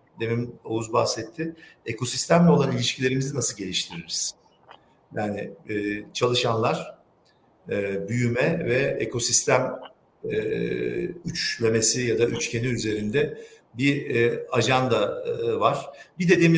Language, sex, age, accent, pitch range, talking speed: Turkish, male, 50-69, native, 115-160 Hz, 100 wpm